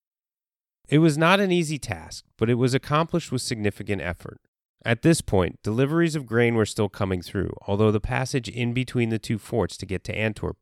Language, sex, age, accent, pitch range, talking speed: English, male, 30-49, American, 100-140 Hz, 200 wpm